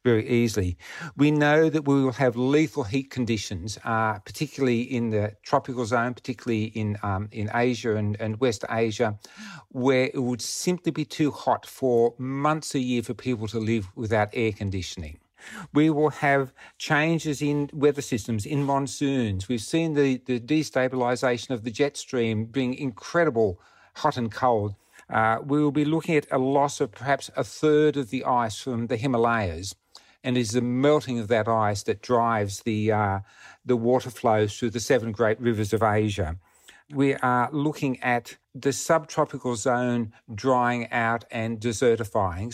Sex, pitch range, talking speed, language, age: male, 110-140 Hz, 165 wpm, English, 50-69